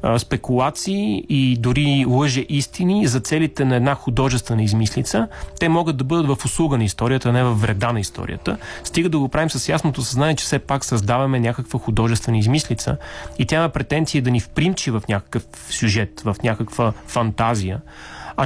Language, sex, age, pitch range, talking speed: Bulgarian, male, 30-49, 115-140 Hz, 170 wpm